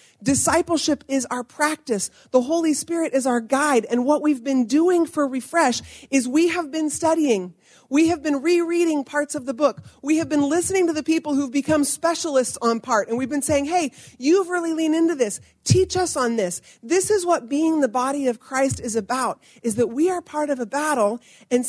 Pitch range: 245-305 Hz